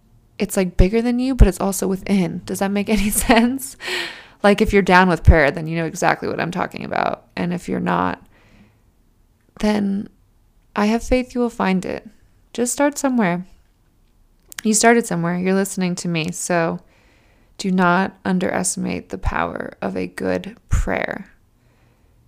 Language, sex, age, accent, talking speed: English, female, 20-39, American, 160 wpm